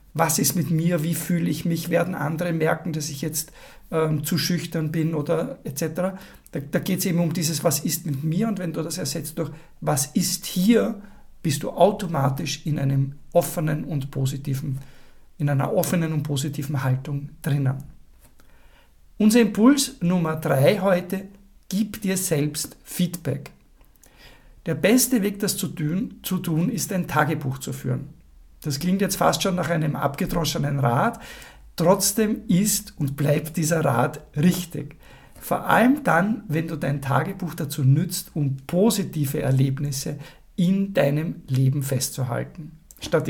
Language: German